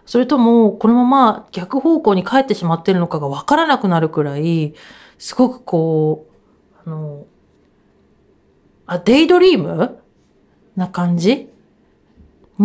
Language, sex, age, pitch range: Japanese, female, 40-59, 165-225 Hz